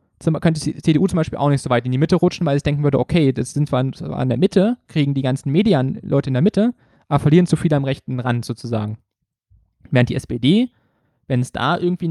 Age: 20-39